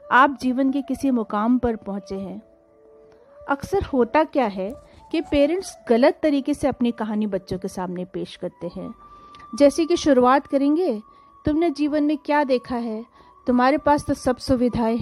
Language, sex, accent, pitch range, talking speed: Hindi, female, native, 210-300 Hz, 160 wpm